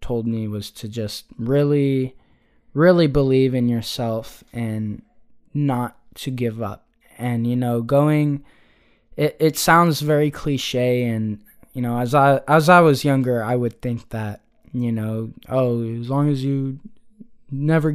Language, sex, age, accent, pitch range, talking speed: English, male, 10-29, American, 120-145 Hz, 150 wpm